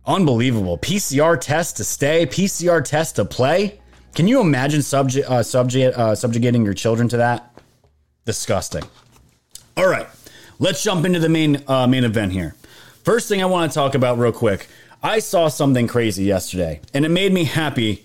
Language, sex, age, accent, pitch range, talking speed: English, male, 30-49, American, 115-150 Hz, 175 wpm